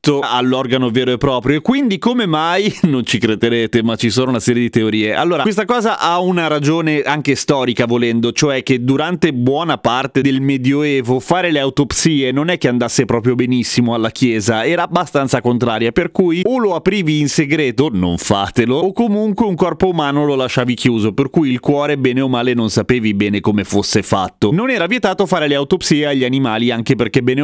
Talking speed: 195 wpm